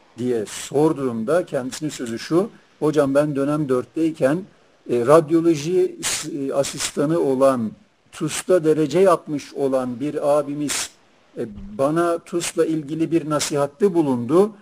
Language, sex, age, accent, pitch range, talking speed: Turkish, male, 50-69, native, 135-170 Hz, 105 wpm